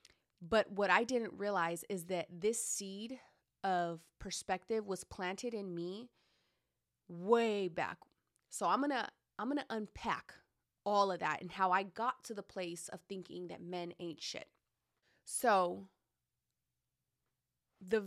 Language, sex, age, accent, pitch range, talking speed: English, female, 30-49, American, 180-215 Hz, 145 wpm